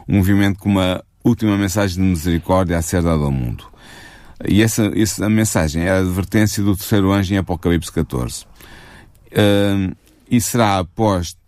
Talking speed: 160 wpm